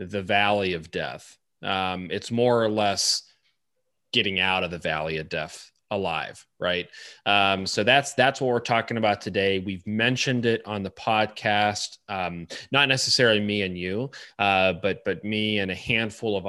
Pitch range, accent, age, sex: 95-115 Hz, American, 30-49, male